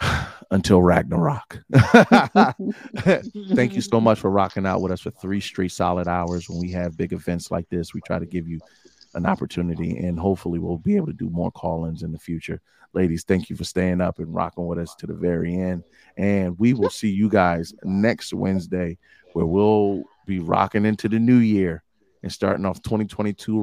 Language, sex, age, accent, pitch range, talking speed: English, male, 30-49, American, 90-100 Hz, 195 wpm